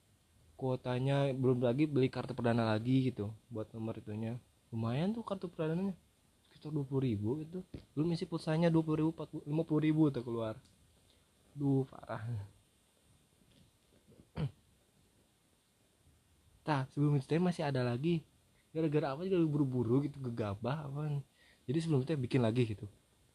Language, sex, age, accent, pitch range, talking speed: Indonesian, male, 20-39, native, 110-145 Hz, 120 wpm